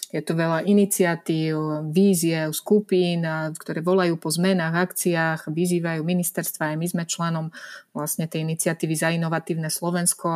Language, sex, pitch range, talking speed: Slovak, female, 170-185 Hz, 135 wpm